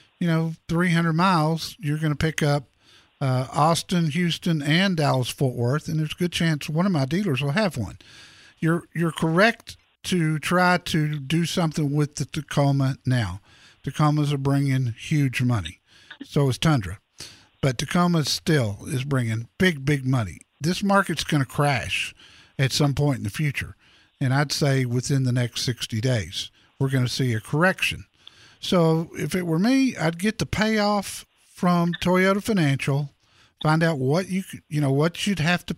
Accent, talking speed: American, 170 wpm